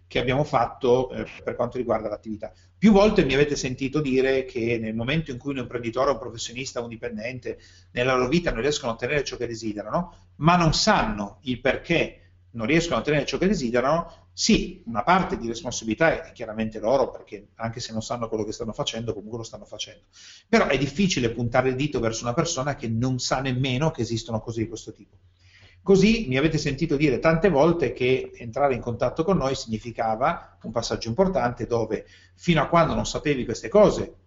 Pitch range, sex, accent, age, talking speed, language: 110-150 Hz, male, native, 40-59, 195 wpm, Italian